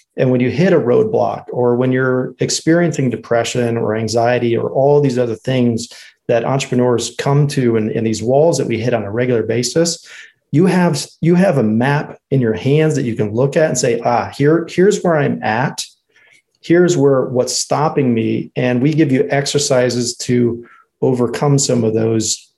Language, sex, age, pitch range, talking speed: English, male, 40-59, 115-145 Hz, 185 wpm